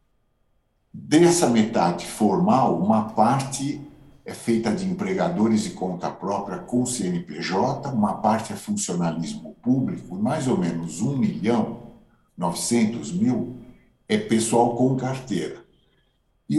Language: English